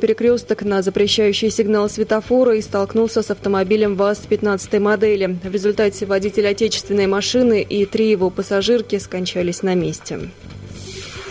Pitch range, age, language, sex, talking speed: 205-235 Hz, 20-39, Russian, female, 125 wpm